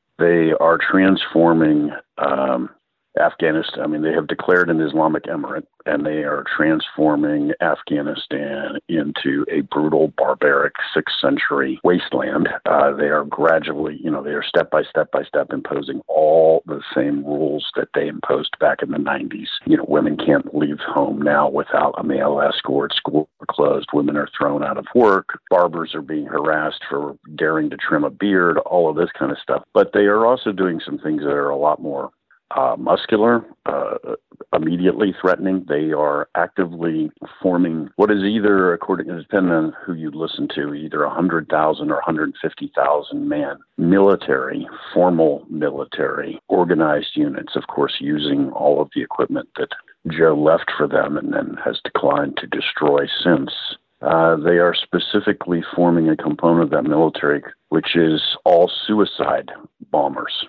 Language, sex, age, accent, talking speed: English, male, 50-69, American, 160 wpm